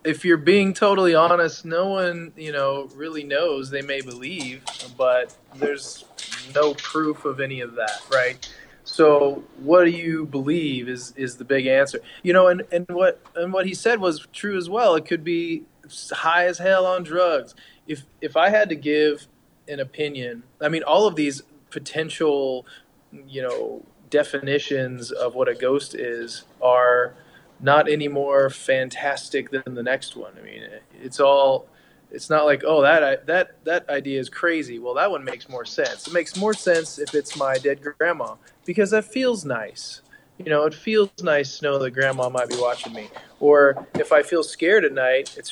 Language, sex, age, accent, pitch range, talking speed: English, male, 20-39, American, 135-180 Hz, 185 wpm